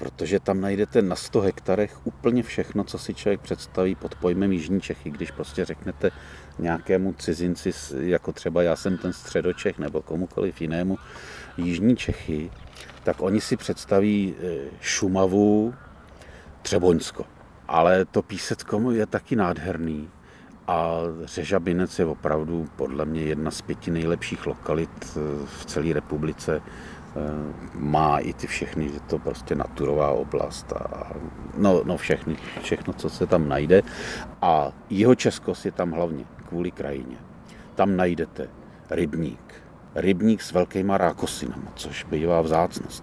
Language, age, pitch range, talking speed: Czech, 40-59, 75-95 Hz, 130 wpm